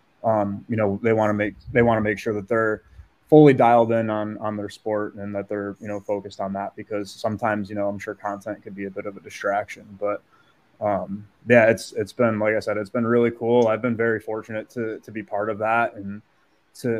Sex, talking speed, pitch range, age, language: male, 240 wpm, 105-115 Hz, 20-39, English